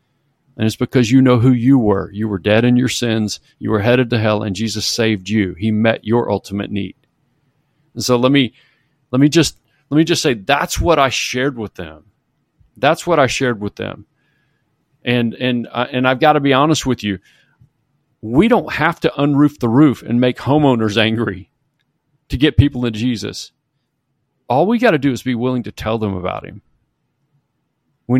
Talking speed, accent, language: 195 wpm, American, English